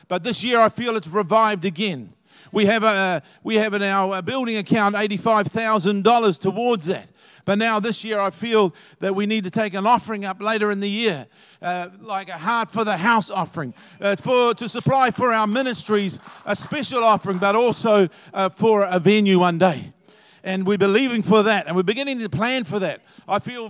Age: 50-69